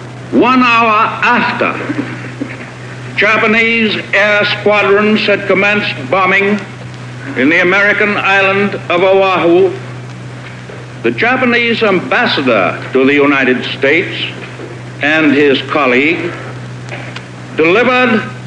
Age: 60-79